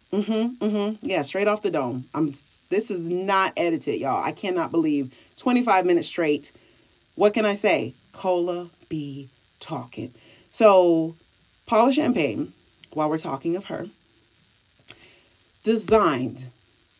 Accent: American